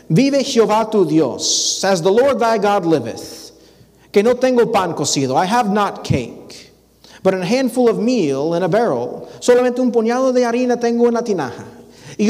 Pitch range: 135-215 Hz